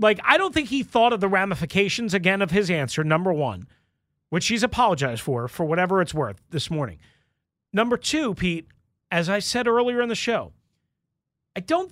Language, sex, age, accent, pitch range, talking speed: English, male, 40-59, American, 165-245 Hz, 185 wpm